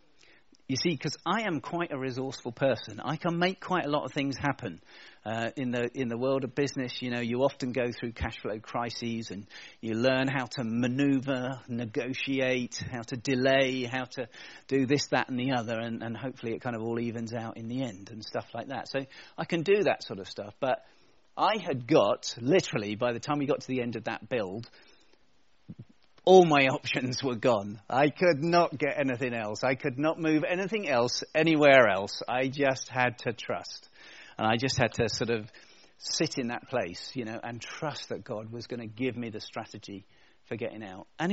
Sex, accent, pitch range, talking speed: male, British, 115-140 Hz, 210 wpm